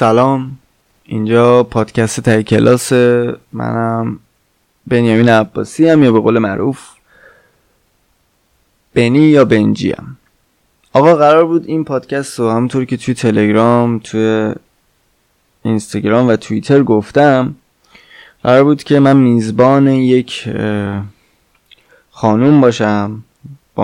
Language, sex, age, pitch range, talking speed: Persian, male, 20-39, 110-130 Hz, 100 wpm